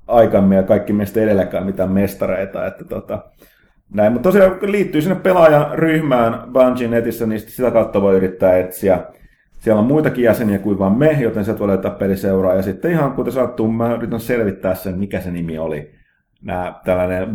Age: 30-49